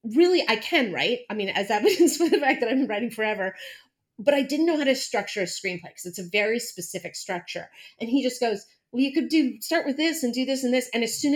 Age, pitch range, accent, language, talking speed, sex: 30-49, 200-270 Hz, American, English, 265 wpm, female